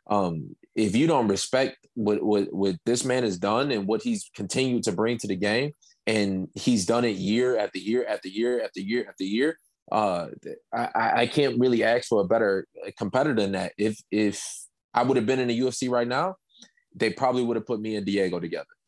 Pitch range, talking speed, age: 105-130 Hz, 210 wpm, 20-39